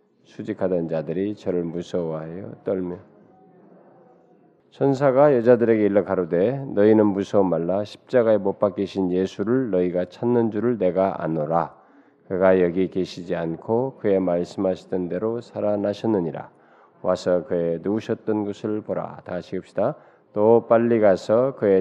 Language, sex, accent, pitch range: Korean, male, native, 90-120 Hz